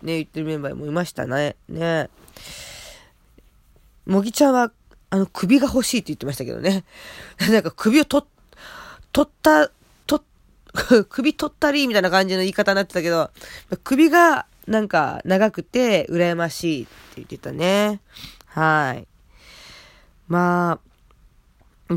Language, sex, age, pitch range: Japanese, female, 20-39, 165-220 Hz